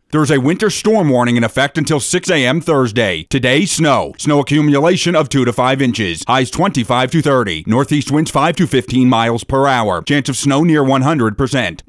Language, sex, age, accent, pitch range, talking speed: English, male, 30-49, American, 125-150 Hz, 190 wpm